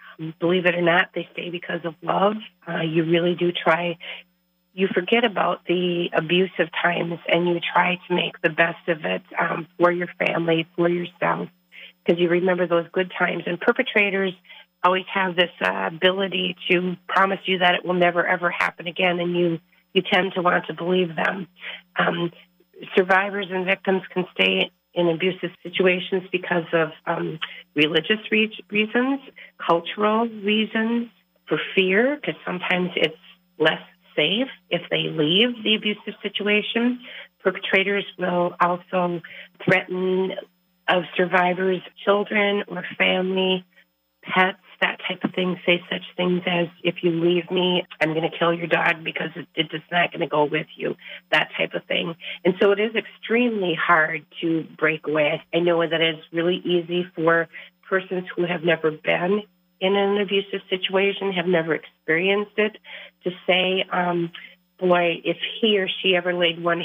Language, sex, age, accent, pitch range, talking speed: English, female, 40-59, American, 170-190 Hz, 160 wpm